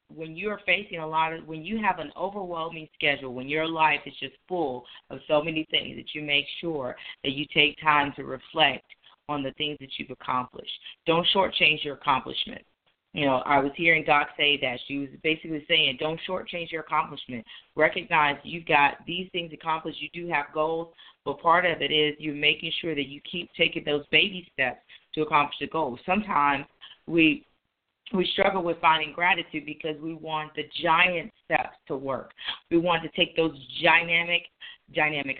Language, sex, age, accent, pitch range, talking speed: English, female, 40-59, American, 150-175 Hz, 185 wpm